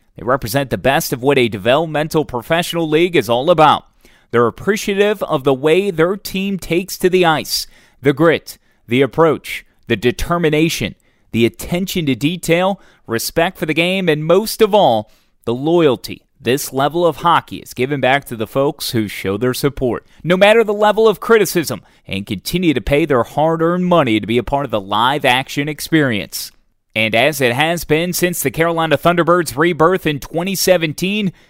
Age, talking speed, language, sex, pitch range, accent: 30-49, 175 wpm, English, male, 125-170 Hz, American